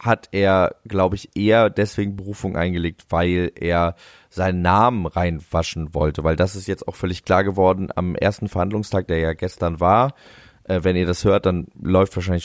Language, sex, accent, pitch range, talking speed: German, male, German, 85-100 Hz, 180 wpm